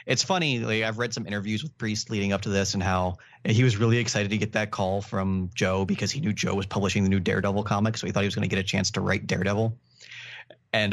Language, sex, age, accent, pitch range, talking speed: English, male, 30-49, American, 100-120 Hz, 270 wpm